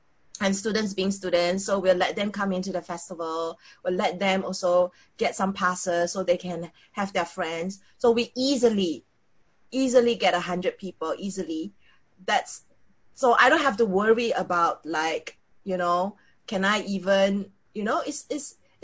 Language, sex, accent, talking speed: English, female, Malaysian, 165 wpm